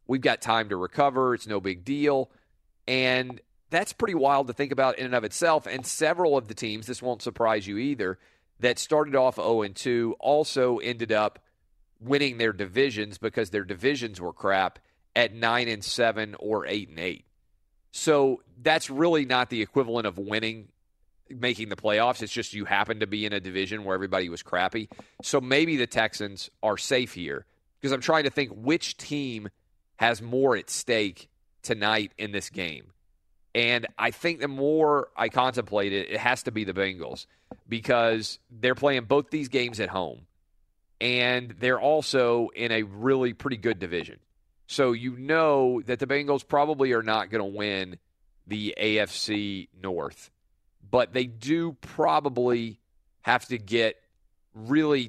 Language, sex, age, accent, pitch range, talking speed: English, male, 40-59, American, 105-135 Hz, 165 wpm